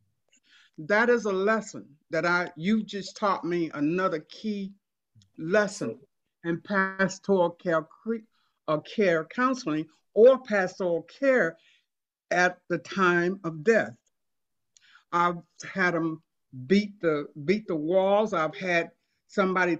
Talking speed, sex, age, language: 120 wpm, male, 60-79, English